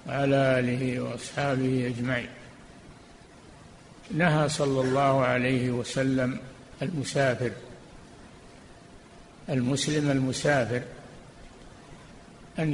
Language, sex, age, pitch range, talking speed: Arabic, male, 60-79, 130-150 Hz, 60 wpm